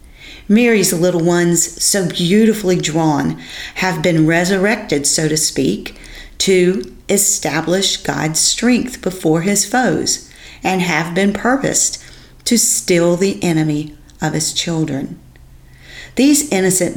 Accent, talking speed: American, 115 wpm